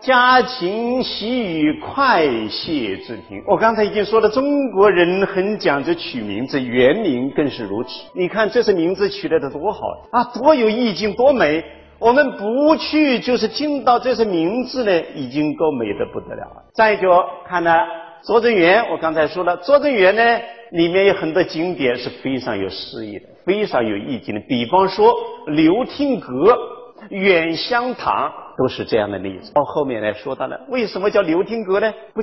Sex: male